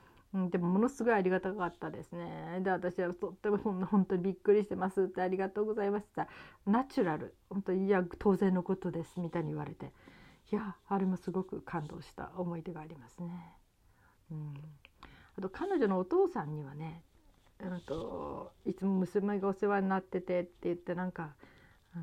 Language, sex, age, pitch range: Japanese, female, 40-59, 165-200 Hz